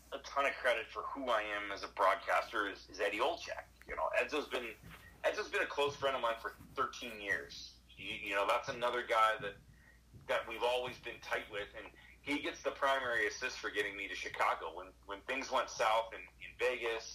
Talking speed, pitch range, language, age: 215 wpm, 100-135 Hz, English, 40-59